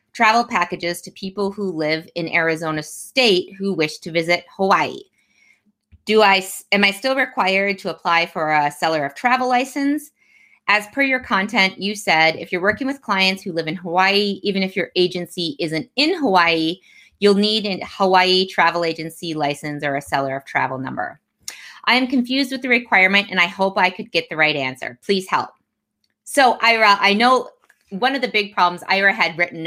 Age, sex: 20-39, female